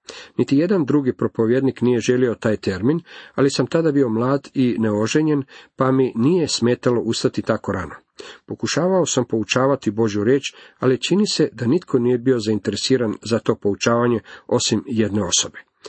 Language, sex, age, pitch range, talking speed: Croatian, male, 50-69, 110-140 Hz, 155 wpm